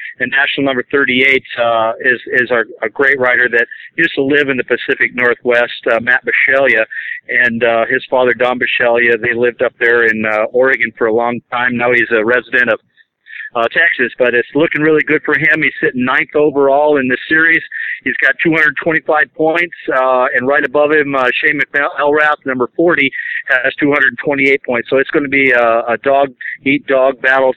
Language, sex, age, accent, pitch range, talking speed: English, male, 50-69, American, 125-150 Hz, 190 wpm